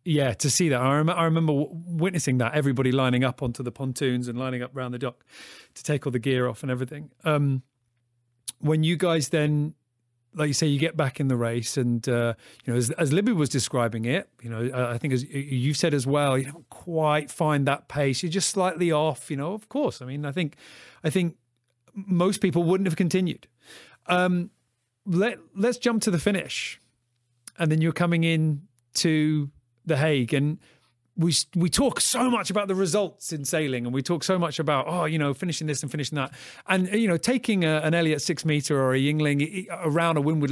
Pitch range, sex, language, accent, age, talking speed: 130-175 Hz, male, English, British, 30-49, 210 wpm